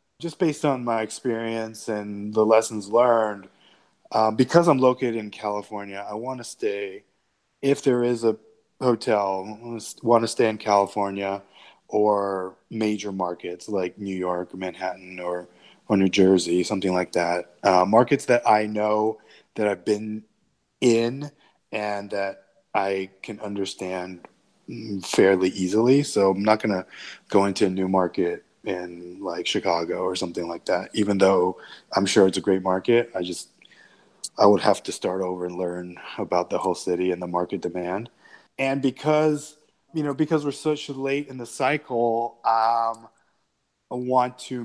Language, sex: English, male